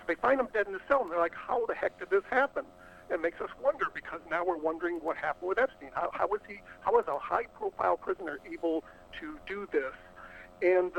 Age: 60-79